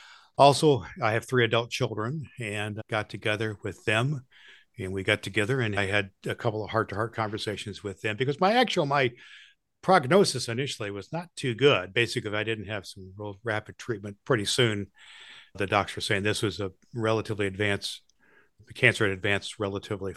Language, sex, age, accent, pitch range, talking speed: English, male, 60-79, American, 100-125 Hz, 180 wpm